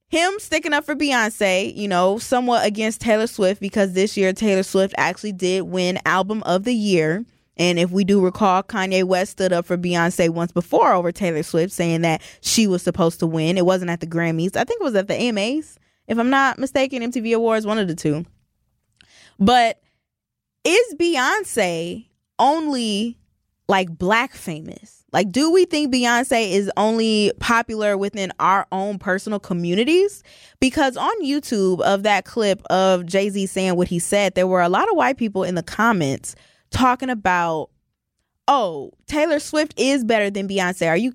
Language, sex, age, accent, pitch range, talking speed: English, female, 20-39, American, 185-250 Hz, 175 wpm